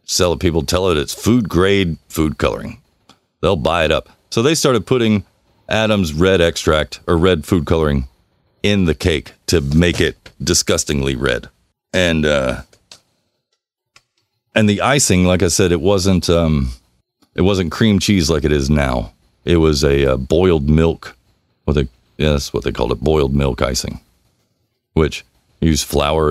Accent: American